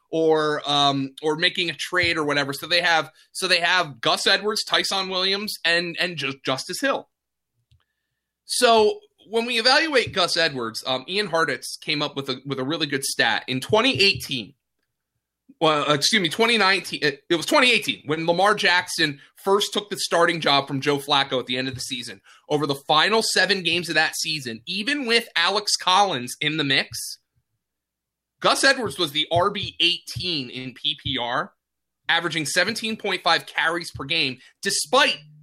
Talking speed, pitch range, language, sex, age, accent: 165 wpm, 145-205 Hz, English, male, 20-39, American